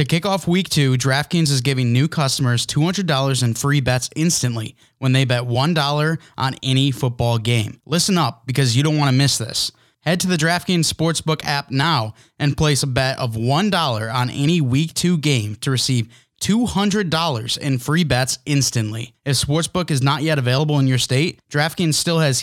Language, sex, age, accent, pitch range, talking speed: English, male, 20-39, American, 125-155 Hz, 185 wpm